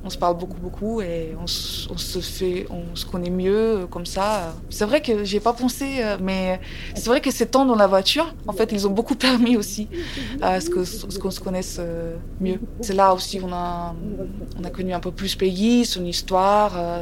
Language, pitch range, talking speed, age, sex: French, 165-200 Hz, 215 wpm, 20-39, female